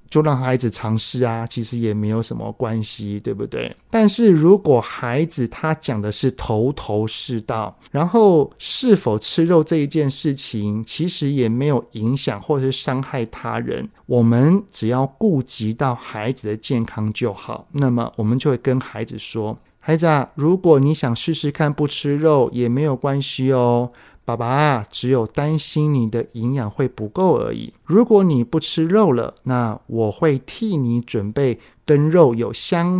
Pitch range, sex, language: 115-155 Hz, male, Chinese